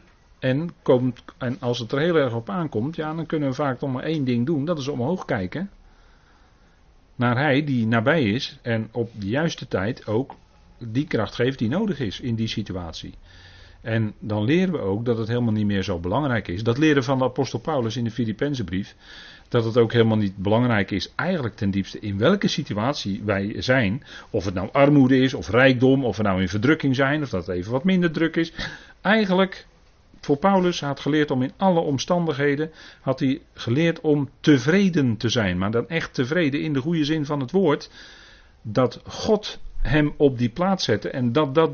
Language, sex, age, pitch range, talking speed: Dutch, male, 40-59, 100-145 Hz, 200 wpm